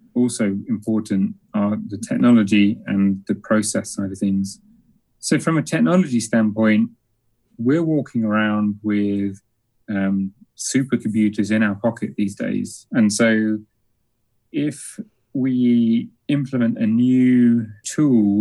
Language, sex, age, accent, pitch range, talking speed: English, male, 30-49, British, 105-120 Hz, 115 wpm